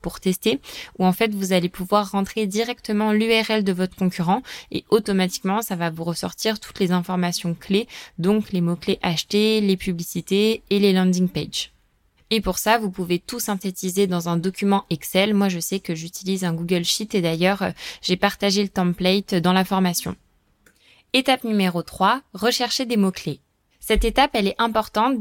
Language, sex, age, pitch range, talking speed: French, female, 20-39, 185-230 Hz, 175 wpm